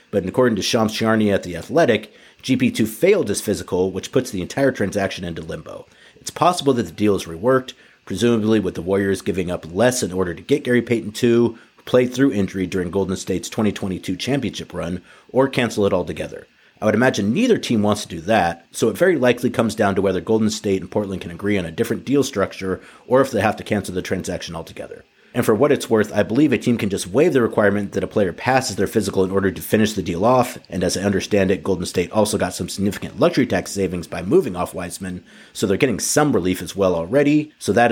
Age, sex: 40-59, male